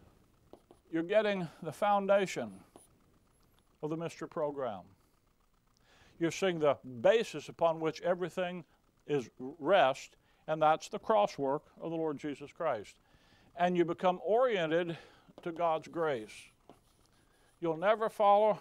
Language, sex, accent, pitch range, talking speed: English, male, American, 145-190 Hz, 120 wpm